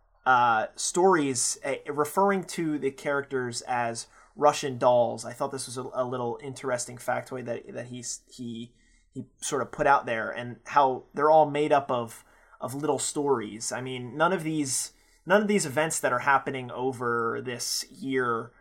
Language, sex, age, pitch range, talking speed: English, male, 30-49, 120-145 Hz, 175 wpm